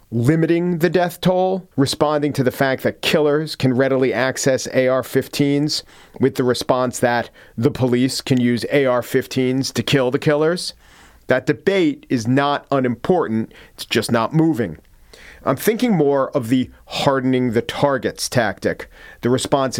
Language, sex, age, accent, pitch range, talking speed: English, male, 40-59, American, 115-145 Hz, 140 wpm